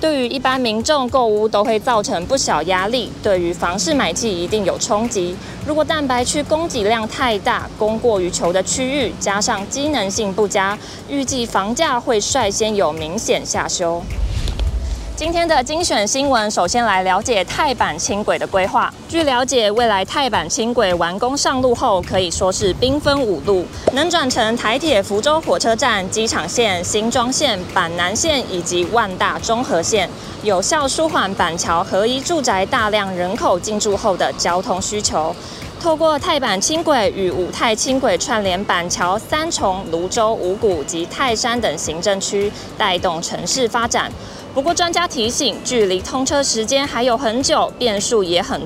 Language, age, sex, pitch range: Chinese, 20-39, female, 200-275 Hz